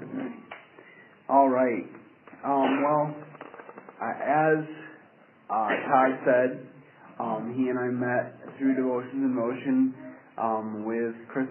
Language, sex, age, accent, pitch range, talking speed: English, male, 40-59, American, 125-145 Hz, 120 wpm